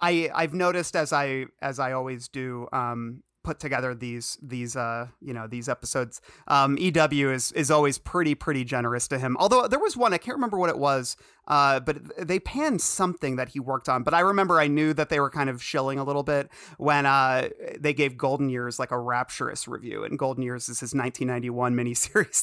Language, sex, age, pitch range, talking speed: English, male, 30-49, 125-160 Hz, 215 wpm